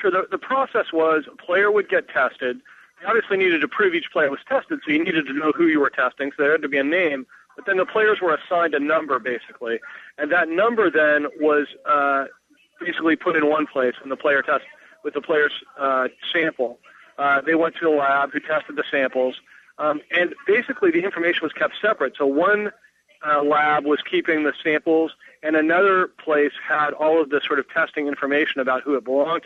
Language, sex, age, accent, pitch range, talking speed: English, male, 40-59, American, 140-180 Hz, 215 wpm